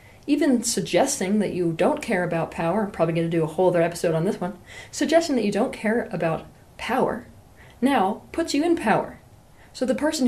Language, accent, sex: English, American, female